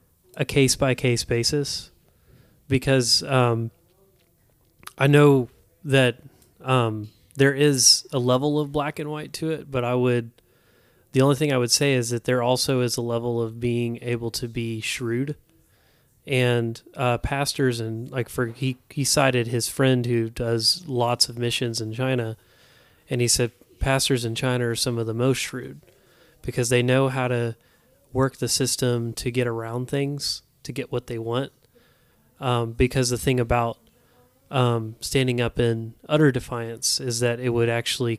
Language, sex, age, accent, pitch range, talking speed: English, male, 30-49, American, 115-135 Hz, 165 wpm